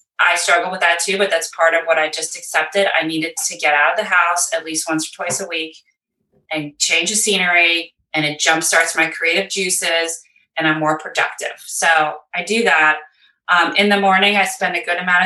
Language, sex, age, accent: English, female, 30-49, American